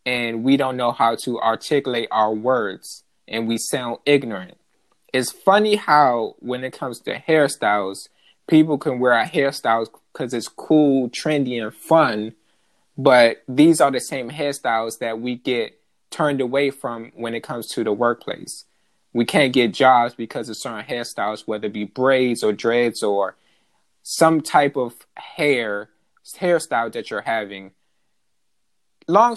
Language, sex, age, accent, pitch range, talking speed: English, male, 20-39, American, 120-155 Hz, 150 wpm